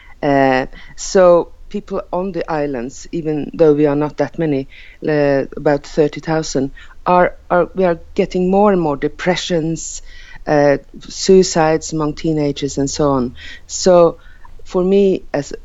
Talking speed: 140 wpm